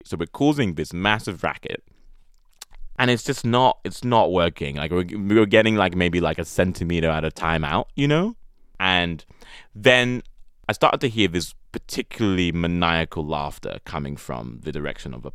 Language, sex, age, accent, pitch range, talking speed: English, male, 20-39, British, 80-115 Hz, 175 wpm